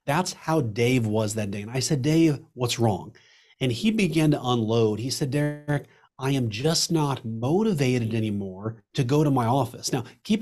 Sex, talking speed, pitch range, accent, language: male, 190 wpm, 120-155 Hz, American, English